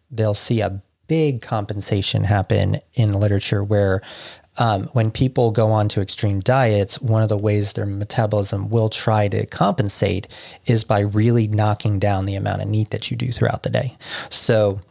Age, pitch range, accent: 30-49, 105-120 Hz, American